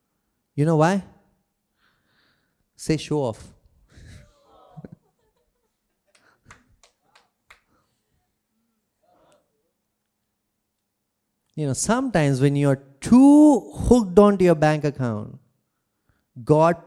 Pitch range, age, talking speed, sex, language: 105-170 Hz, 30-49, 65 wpm, male, English